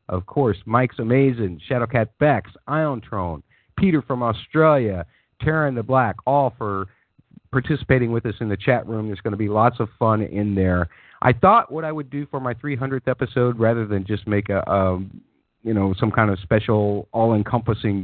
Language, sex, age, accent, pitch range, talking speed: English, male, 50-69, American, 100-125 Hz, 180 wpm